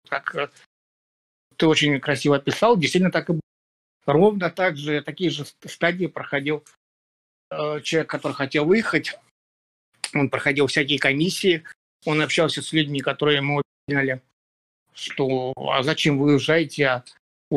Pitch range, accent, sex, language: 135-155 Hz, native, male, Russian